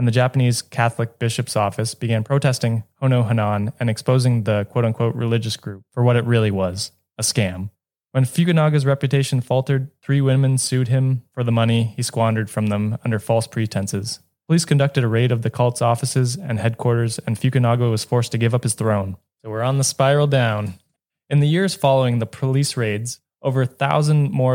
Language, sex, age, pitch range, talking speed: English, male, 20-39, 110-135 Hz, 185 wpm